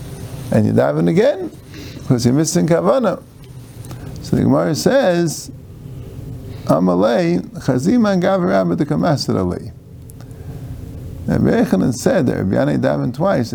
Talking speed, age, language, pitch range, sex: 105 wpm, 50-69, English, 105-135 Hz, male